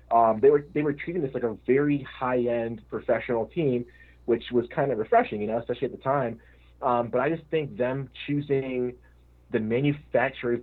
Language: English